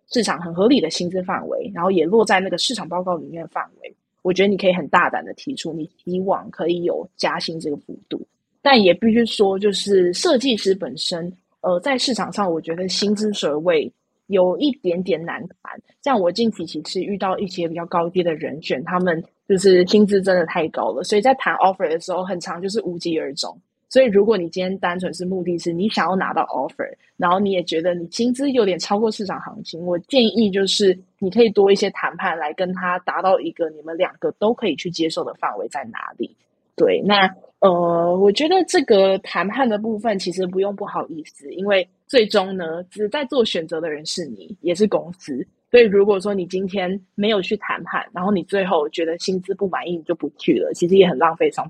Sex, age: female, 20-39